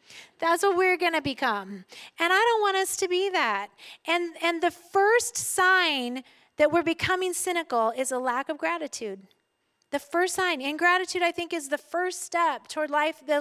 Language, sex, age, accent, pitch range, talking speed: English, female, 30-49, American, 270-370 Hz, 190 wpm